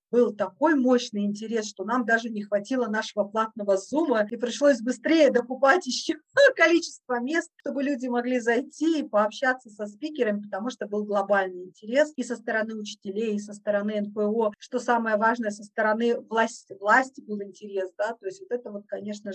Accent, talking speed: native, 175 wpm